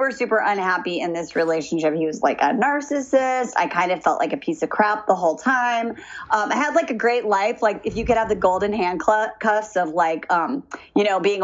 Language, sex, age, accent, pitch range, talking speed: English, female, 30-49, American, 180-245 Hz, 230 wpm